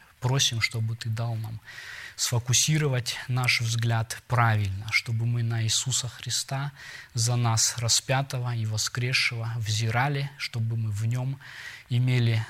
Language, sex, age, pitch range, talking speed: Russian, male, 20-39, 115-125 Hz, 120 wpm